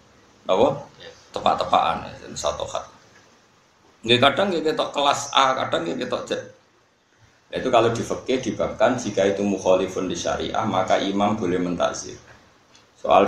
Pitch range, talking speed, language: 90-120 Hz, 115 wpm, Indonesian